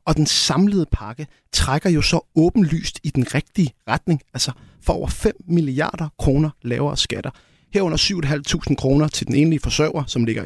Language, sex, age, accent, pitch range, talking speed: Danish, male, 30-49, native, 130-170 Hz, 165 wpm